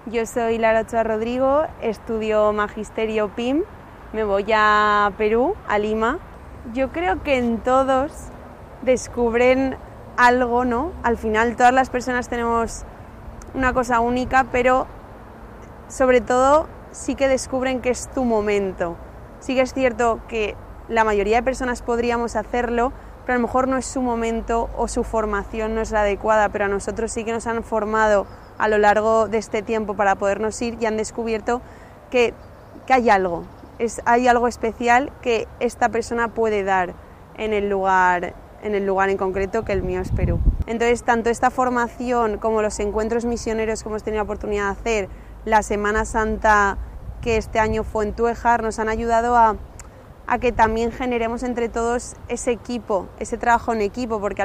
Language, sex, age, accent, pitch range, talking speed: Spanish, female, 20-39, Spanish, 215-245 Hz, 170 wpm